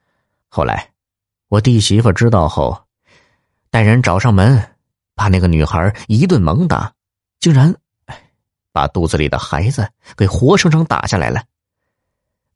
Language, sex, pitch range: Chinese, male, 95-125 Hz